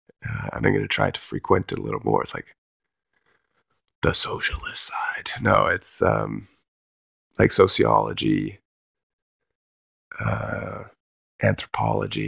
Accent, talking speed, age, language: American, 110 wpm, 30-49, English